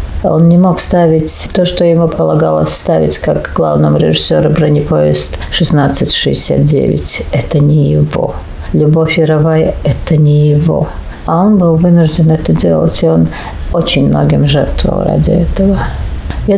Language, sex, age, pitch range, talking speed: Russian, female, 50-69, 155-170 Hz, 135 wpm